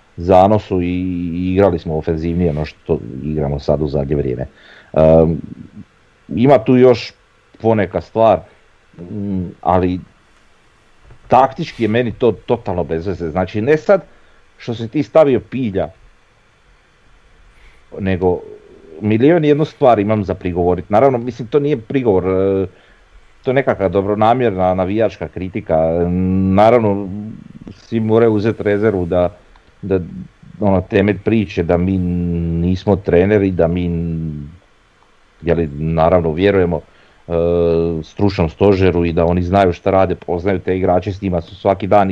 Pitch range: 85-110 Hz